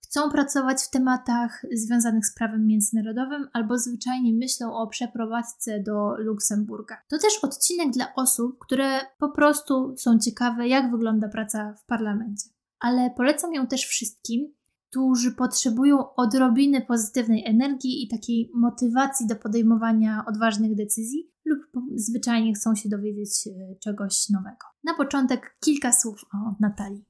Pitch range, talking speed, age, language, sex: 220-260 Hz, 135 wpm, 20-39, Polish, female